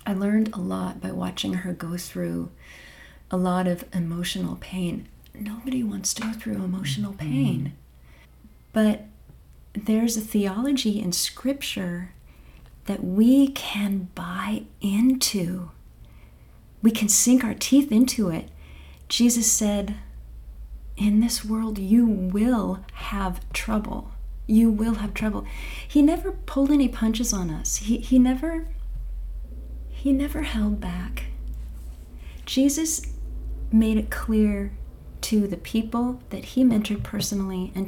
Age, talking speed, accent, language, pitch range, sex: 40-59, 125 wpm, American, English, 175-230 Hz, female